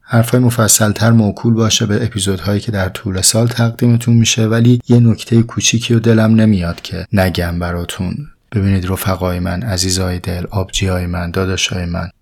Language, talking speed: Persian, 150 wpm